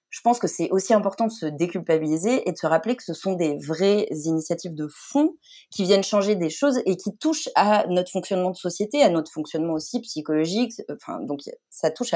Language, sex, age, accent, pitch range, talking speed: French, female, 30-49, French, 160-215 Hz, 210 wpm